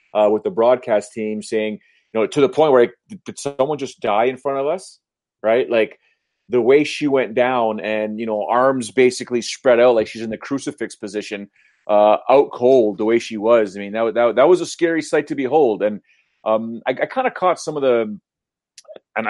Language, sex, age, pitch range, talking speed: English, male, 30-49, 110-140 Hz, 220 wpm